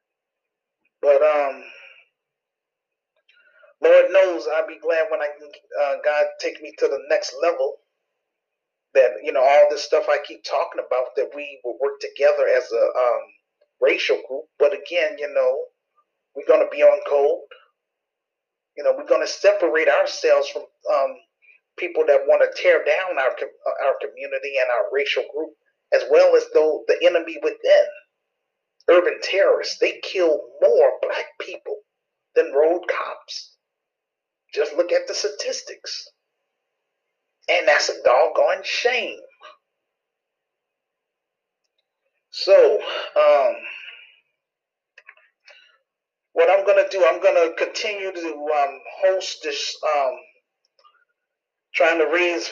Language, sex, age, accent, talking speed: English, male, 30-49, American, 130 wpm